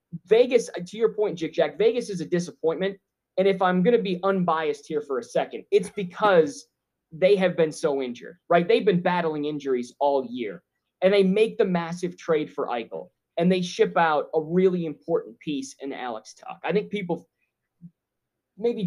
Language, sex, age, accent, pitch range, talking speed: English, male, 20-39, American, 150-190 Hz, 185 wpm